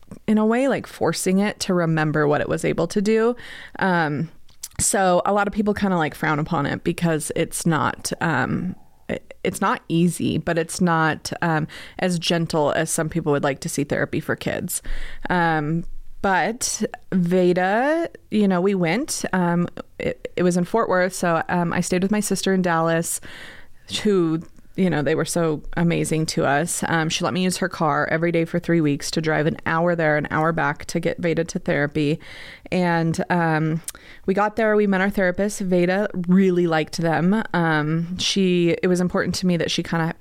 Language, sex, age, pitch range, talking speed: English, female, 30-49, 160-185 Hz, 195 wpm